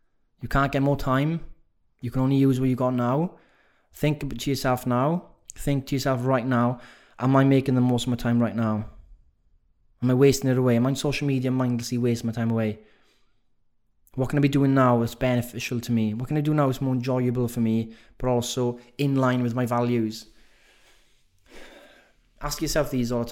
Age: 20-39